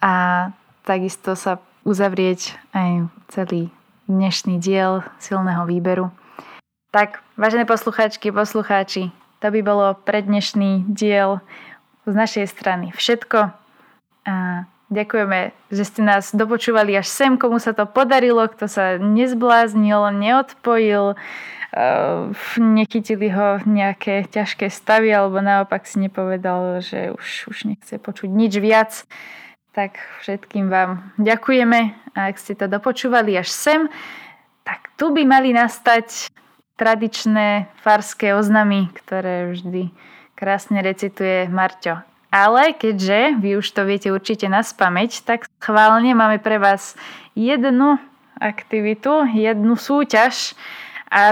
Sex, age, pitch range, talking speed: female, 20-39, 195-230 Hz, 115 wpm